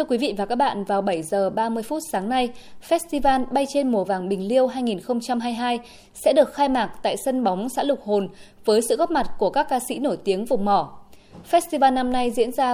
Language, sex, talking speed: Vietnamese, female, 225 wpm